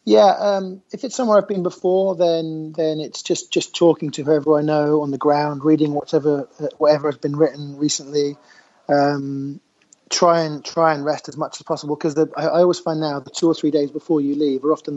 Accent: British